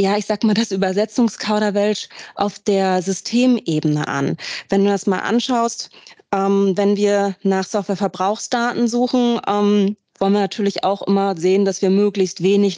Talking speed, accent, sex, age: 150 wpm, German, female, 20-39